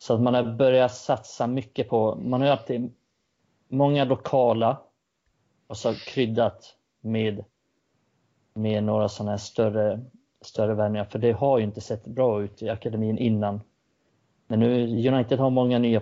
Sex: male